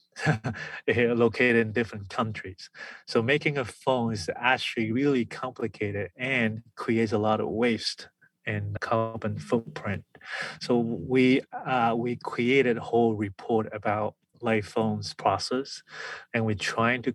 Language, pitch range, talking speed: English, 105-115 Hz, 125 wpm